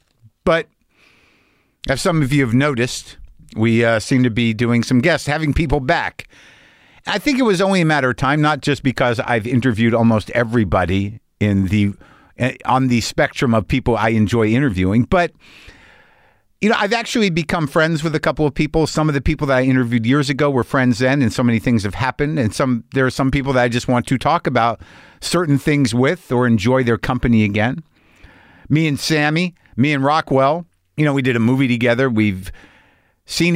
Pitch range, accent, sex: 115-155 Hz, American, male